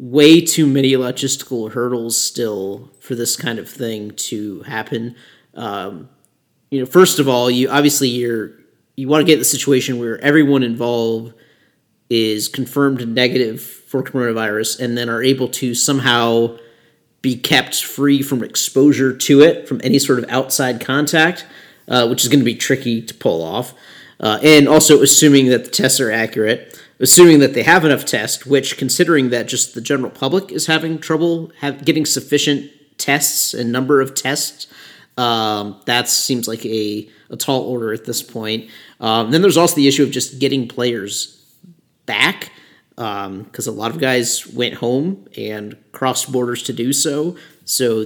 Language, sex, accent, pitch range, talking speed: English, male, American, 115-140 Hz, 165 wpm